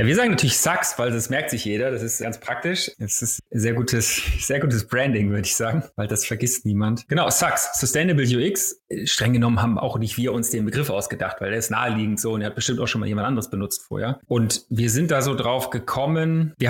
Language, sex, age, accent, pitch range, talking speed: German, male, 30-49, German, 115-135 Hz, 235 wpm